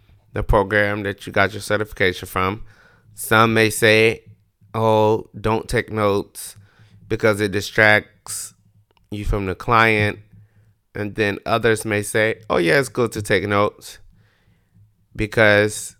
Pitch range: 105-125 Hz